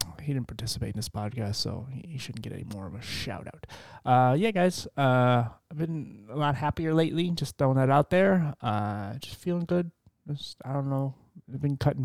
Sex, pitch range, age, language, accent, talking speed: male, 110-135 Hz, 20-39, English, American, 210 wpm